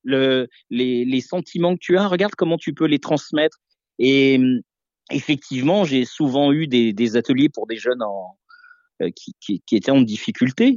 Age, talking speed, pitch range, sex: 50-69, 180 wpm, 125-195 Hz, male